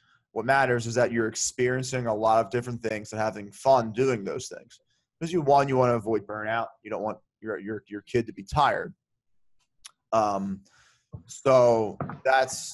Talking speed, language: 180 wpm, English